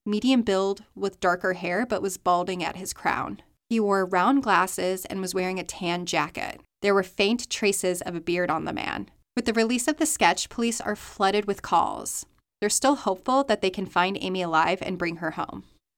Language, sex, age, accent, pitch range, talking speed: English, female, 20-39, American, 180-225 Hz, 205 wpm